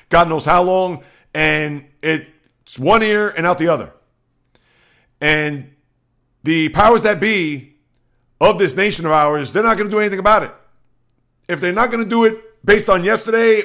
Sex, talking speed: male, 175 wpm